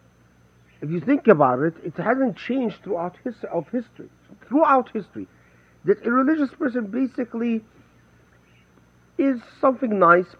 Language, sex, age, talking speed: English, male, 50-69, 125 wpm